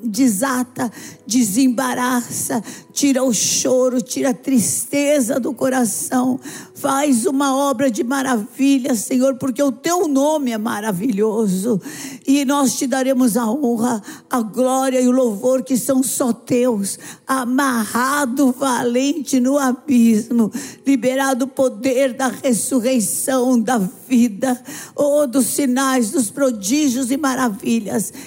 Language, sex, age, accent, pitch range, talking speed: Portuguese, female, 50-69, Brazilian, 200-265 Hz, 115 wpm